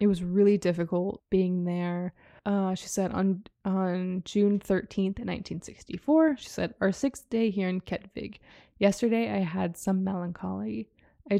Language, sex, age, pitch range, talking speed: English, female, 20-39, 180-205 Hz, 145 wpm